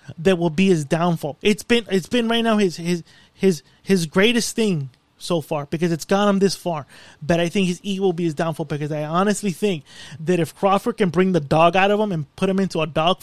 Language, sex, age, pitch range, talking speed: English, male, 20-39, 160-195 Hz, 245 wpm